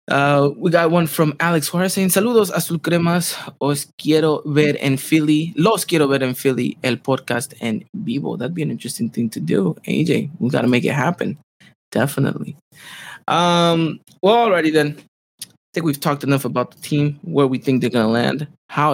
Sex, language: male, English